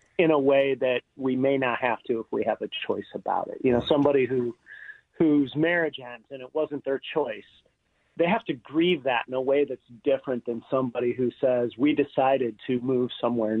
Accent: American